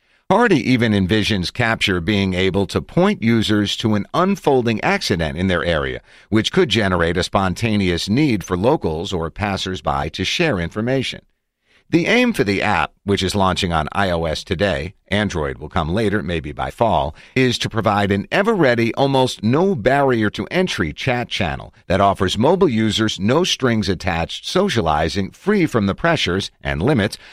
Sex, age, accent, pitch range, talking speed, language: male, 50-69, American, 90-120 Hz, 155 wpm, English